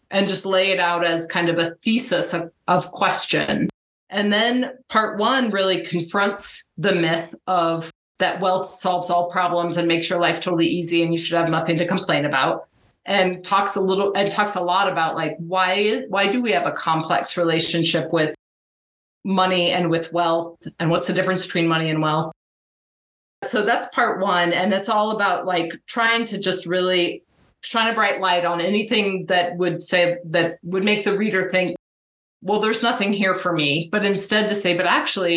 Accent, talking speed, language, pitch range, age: American, 190 wpm, English, 170-200 Hz, 30-49